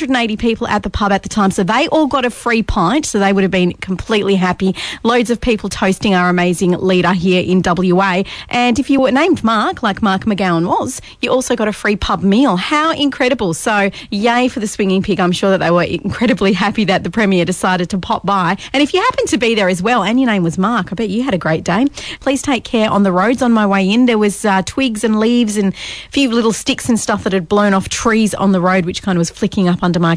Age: 30-49